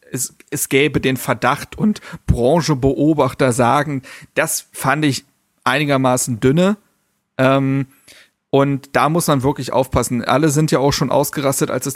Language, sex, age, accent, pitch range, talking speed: German, male, 40-59, German, 130-155 Hz, 140 wpm